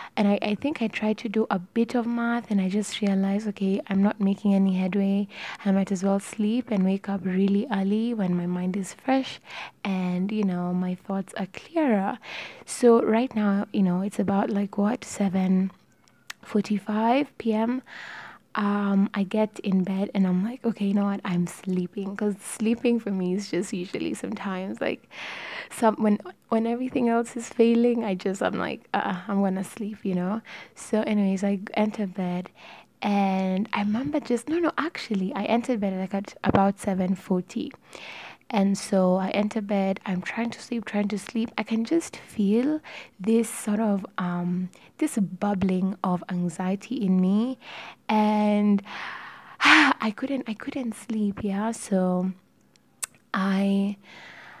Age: 20-39